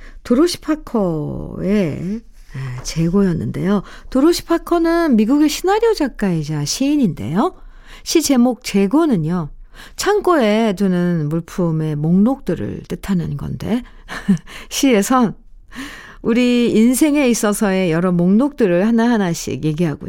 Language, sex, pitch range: Korean, female, 170-270 Hz